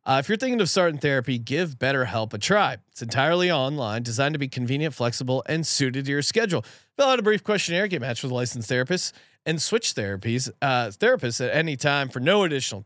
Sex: male